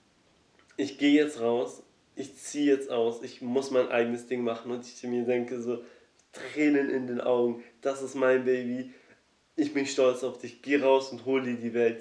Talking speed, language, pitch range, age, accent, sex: 195 wpm, German, 120-140 Hz, 20-39, German, male